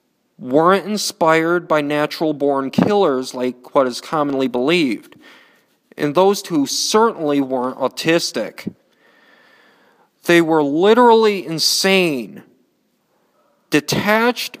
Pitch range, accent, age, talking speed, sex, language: 135-195 Hz, American, 40-59, 90 wpm, male, English